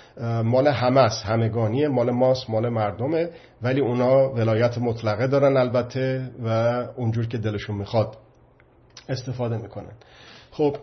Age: 50-69